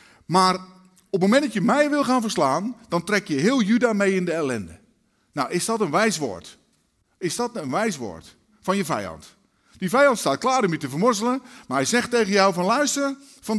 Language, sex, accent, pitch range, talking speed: Dutch, male, Dutch, 145-235 Hz, 210 wpm